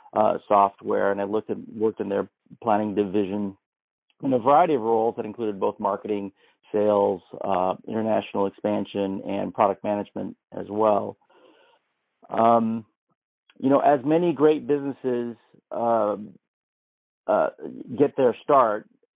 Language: English